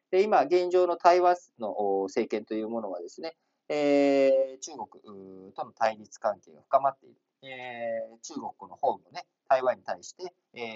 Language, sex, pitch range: Japanese, male, 115-180 Hz